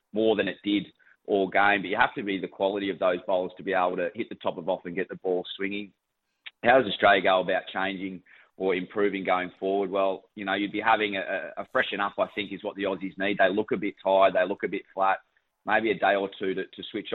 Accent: Australian